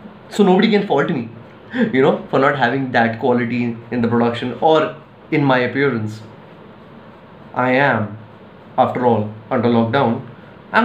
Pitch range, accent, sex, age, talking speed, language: 120-165 Hz, native, male, 20-39, 145 wpm, Hindi